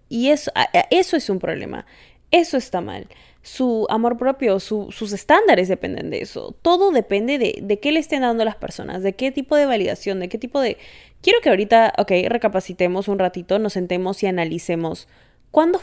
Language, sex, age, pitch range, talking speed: Spanish, female, 10-29, 190-245 Hz, 180 wpm